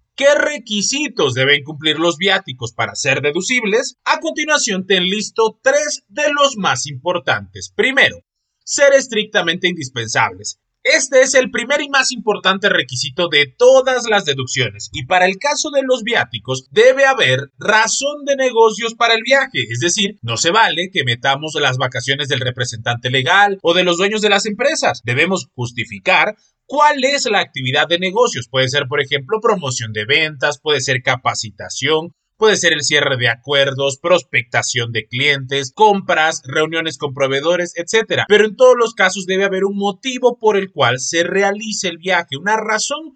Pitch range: 140-235 Hz